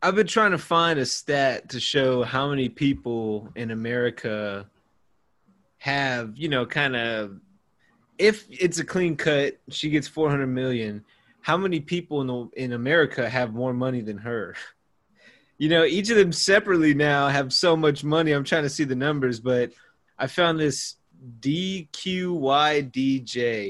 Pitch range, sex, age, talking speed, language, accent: 120-155 Hz, male, 20-39, 155 wpm, English, American